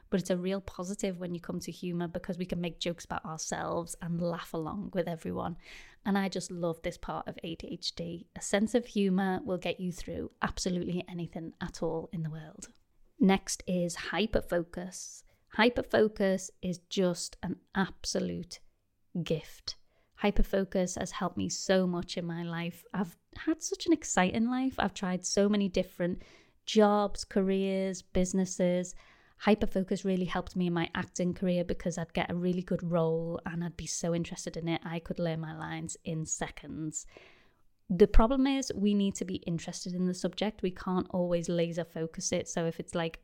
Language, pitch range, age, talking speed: English, 170-200 Hz, 20-39, 175 wpm